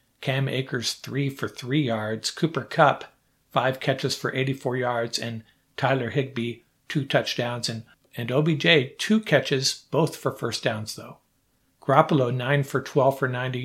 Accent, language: American, English